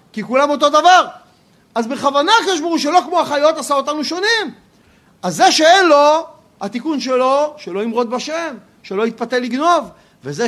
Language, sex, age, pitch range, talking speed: Hebrew, male, 40-59, 245-325 Hz, 150 wpm